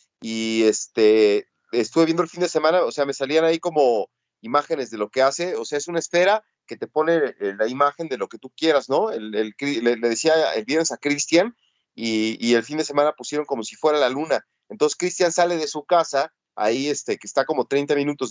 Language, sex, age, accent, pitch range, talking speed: Spanish, male, 30-49, Mexican, 130-175 Hz, 225 wpm